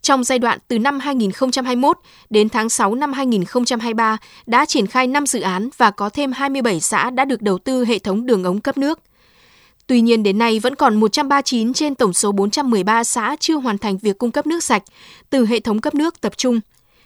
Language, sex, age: Vietnamese, female, 20-39